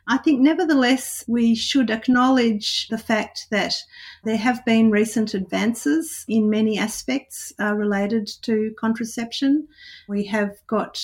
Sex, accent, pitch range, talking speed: female, Australian, 205-230 Hz, 130 wpm